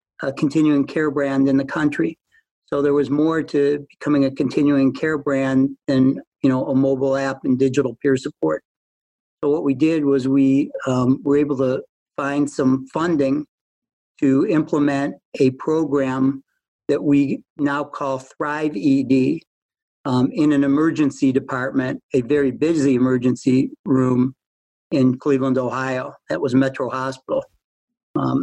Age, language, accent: 60-79, English, American